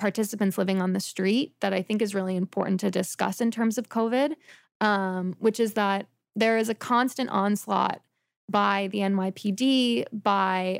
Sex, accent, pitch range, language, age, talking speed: female, American, 195-235 Hz, English, 20-39, 165 wpm